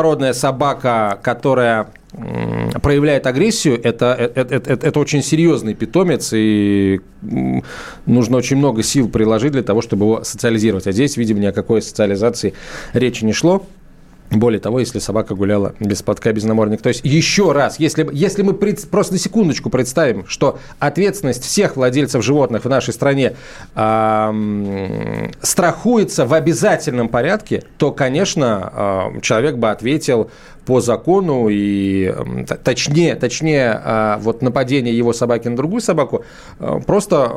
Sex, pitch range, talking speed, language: male, 110-150 Hz, 140 wpm, Russian